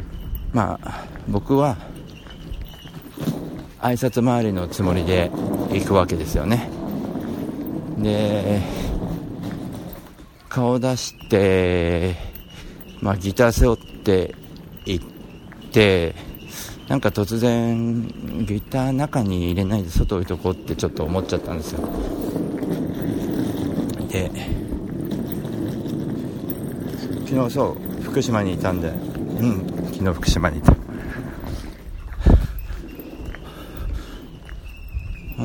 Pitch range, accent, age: 85-105 Hz, native, 60-79